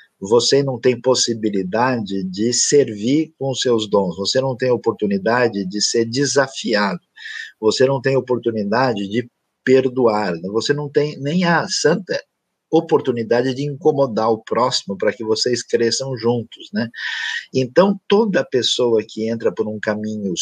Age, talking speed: 50-69, 140 wpm